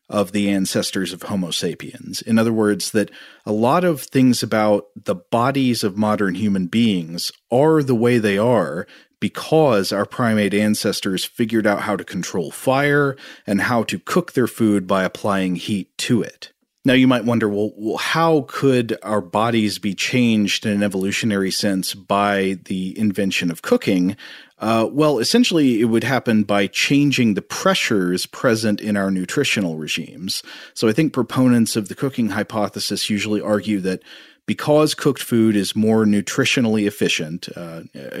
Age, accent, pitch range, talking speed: 40-59, American, 100-125 Hz, 160 wpm